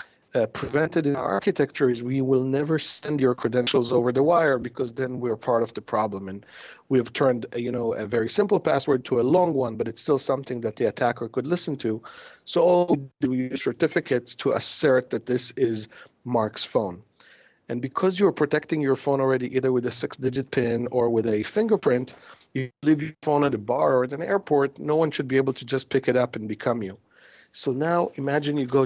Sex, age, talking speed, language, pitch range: male, 50-69, 220 wpm, English, 125-155 Hz